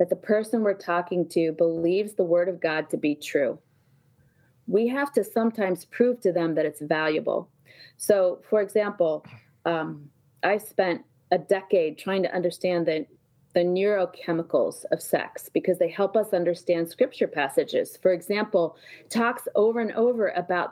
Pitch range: 170-215 Hz